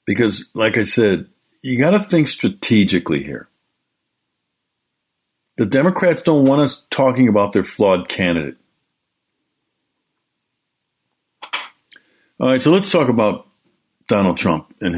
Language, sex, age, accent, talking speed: English, male, 50-69, American, 115 wpm